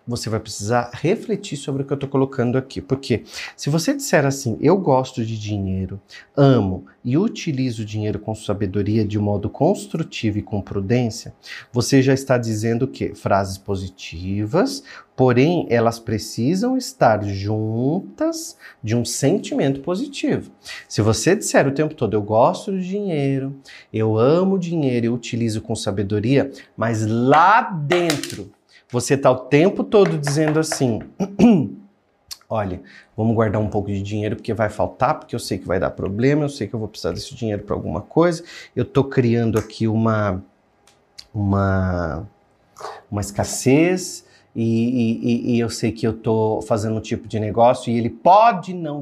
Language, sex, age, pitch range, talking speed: Portuguese, male, 40-59, 110-150 Hz, 160 wpm